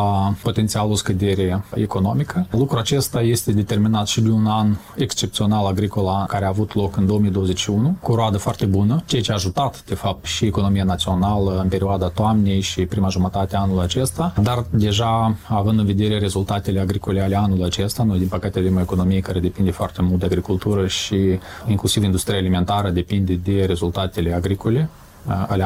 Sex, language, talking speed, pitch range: male, Romanian, 170 wpm, 95-110 Hz